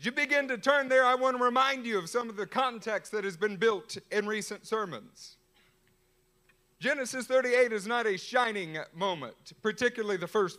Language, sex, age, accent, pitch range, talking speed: English, male, 50-69, American, 190-245 Hz, 185 wpm